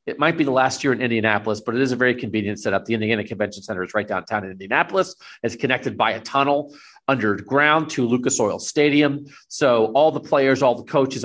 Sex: male